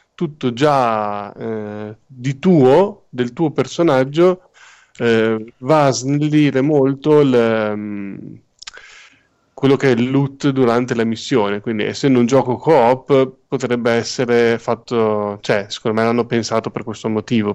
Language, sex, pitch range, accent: Italian, male, 115-140 Hz, native